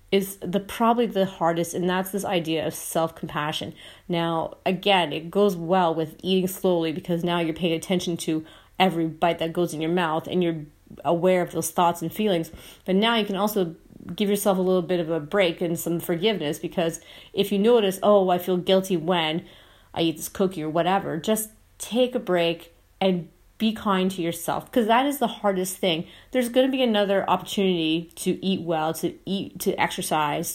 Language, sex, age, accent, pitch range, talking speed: English, female, 30-49, American, 165-190 Hz, 195 wpm